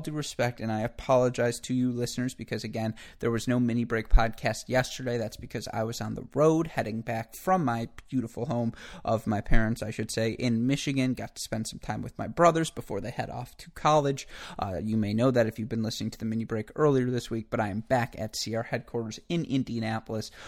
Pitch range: 110-130 Hz